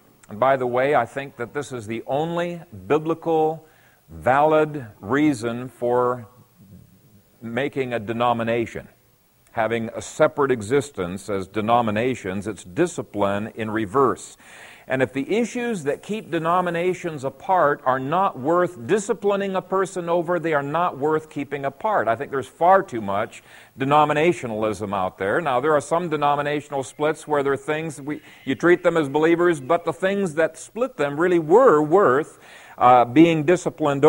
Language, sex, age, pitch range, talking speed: English, male, 50-69, 130-180 Hz, 150 wpm